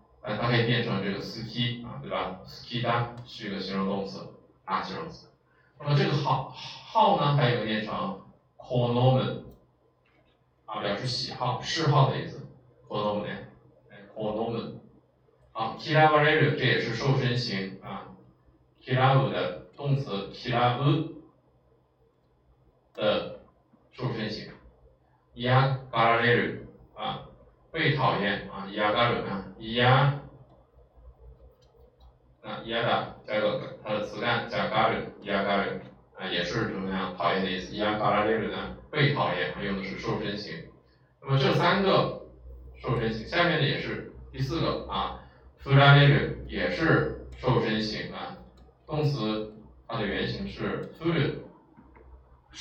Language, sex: Chinese, male